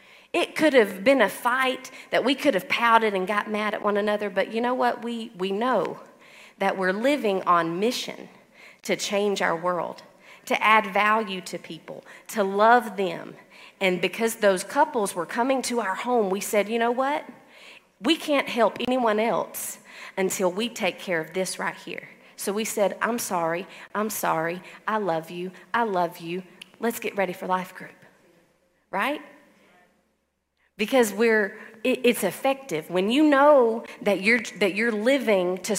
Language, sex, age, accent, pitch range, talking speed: English, female, 40-59, American, 185-245 Hz, 170 wpm